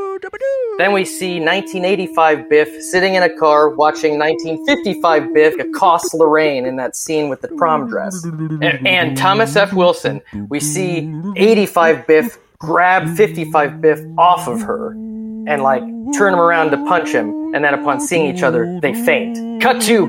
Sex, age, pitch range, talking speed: male, 30-49, 165-235 Hz, 160 wpm